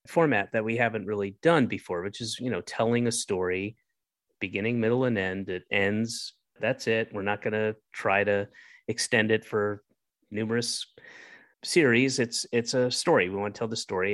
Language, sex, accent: English, male, American